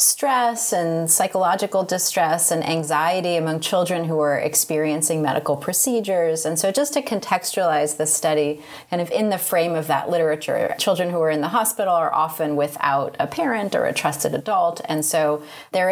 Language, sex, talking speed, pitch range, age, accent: English, female, 175 wpm, 155-225 Hz, 30-49, American